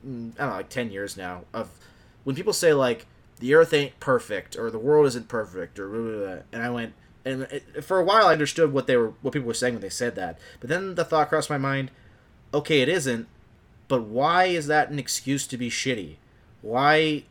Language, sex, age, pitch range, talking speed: English, male, 30-49, 115-145 Hz, 230 wpm